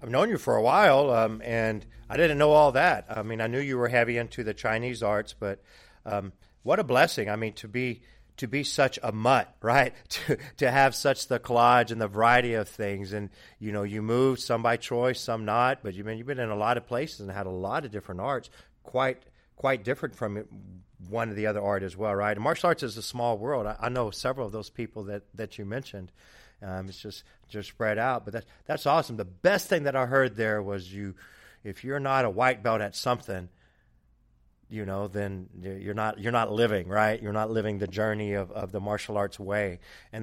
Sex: male